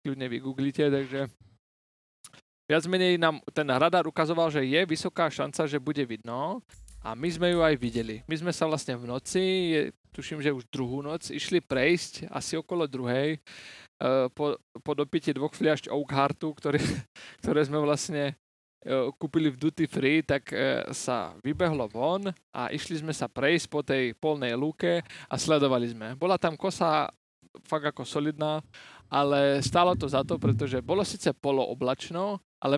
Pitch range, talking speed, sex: 130-165 Hz, 160 wpm, male